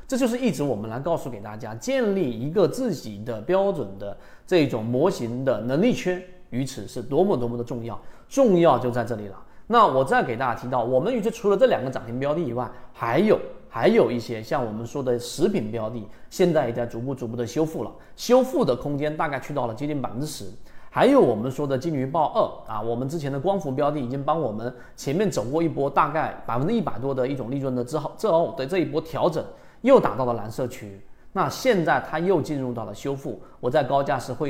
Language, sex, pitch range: Chinese, male, 120-160 Hz